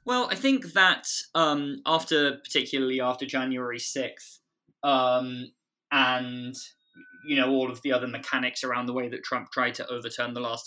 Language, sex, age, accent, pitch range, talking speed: English, male, 20-39, British, 120-140 Hz, 165 wpm